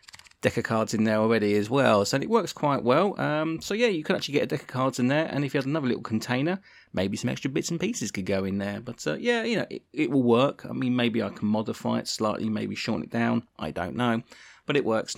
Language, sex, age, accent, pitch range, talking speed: English, male, 30-49, British, 110-130 Hz, 275 wpm